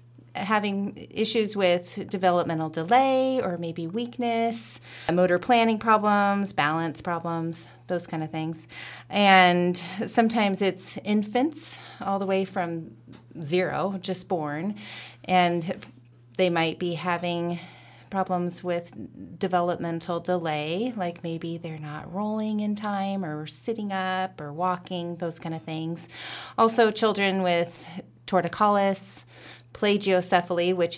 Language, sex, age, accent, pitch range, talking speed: English, female, 30-49, American, 165-195 Hz, 115 wpm